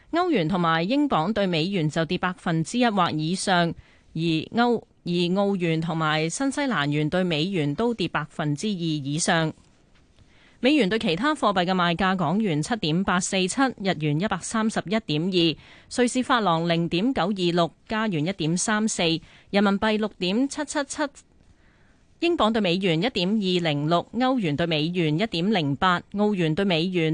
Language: Chinese